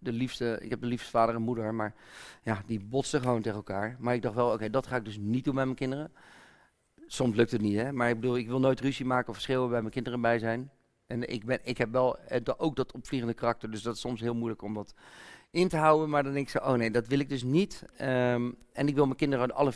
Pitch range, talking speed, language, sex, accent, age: 115-150 Hz, 275 wpm, Dutch, male, Dutch, 40-59